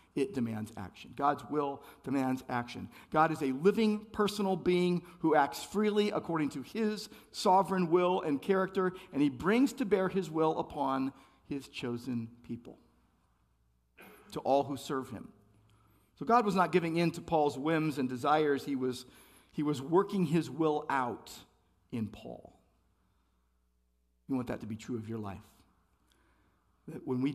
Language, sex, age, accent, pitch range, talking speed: English, male, 50-69, American, 120-165 Hz, 160 wpm